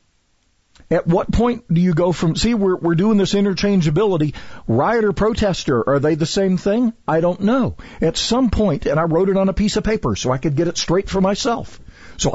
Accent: American